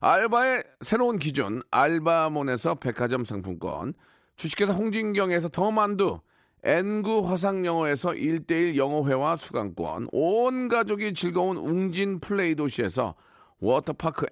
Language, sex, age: Korean, male, 40-59